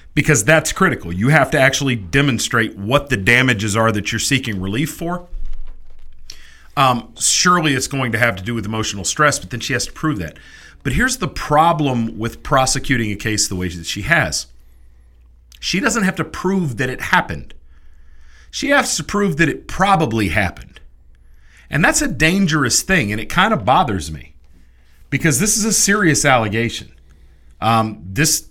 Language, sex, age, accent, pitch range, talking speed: English, male, 40-59, American, 95-145 Hz, 175 wpm